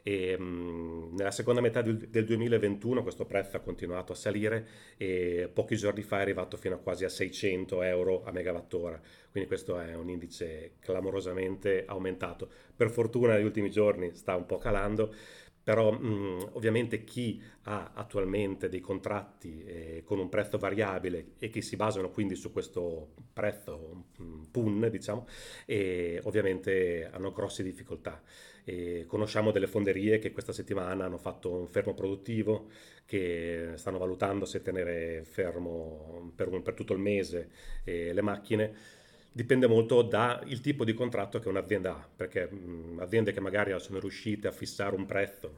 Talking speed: 150 wpm